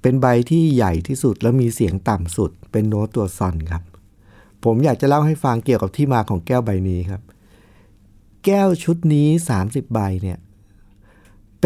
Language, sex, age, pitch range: Thai, male, 60-79, 100-140 Hz